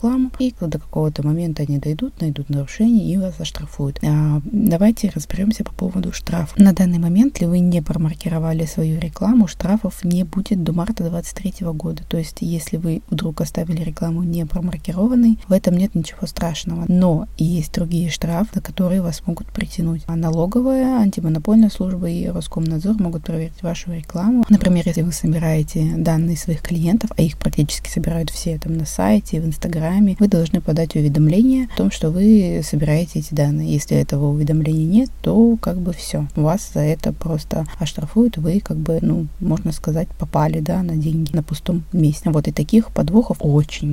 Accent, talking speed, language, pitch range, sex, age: native, 165 wpm, Russian, 160-190 Hz, female, 20-39